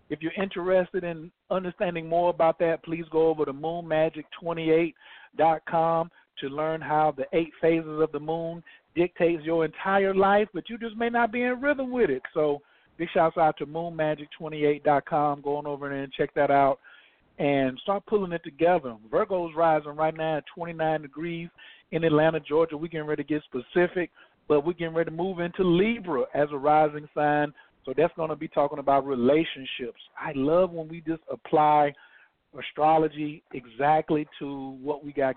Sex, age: male, 50-69